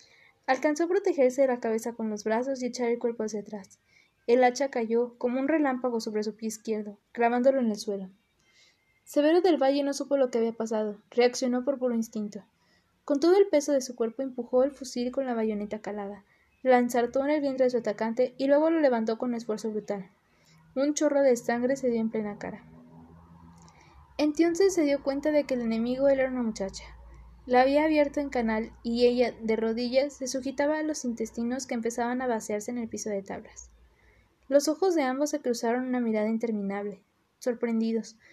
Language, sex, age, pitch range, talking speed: Spanish, female, 20-39, 225-275 Hz, 195 wpm